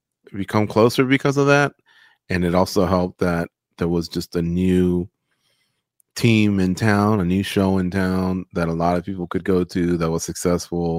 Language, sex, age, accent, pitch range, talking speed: English, male, 30-49, American, 85-105 Hz, 185 wpm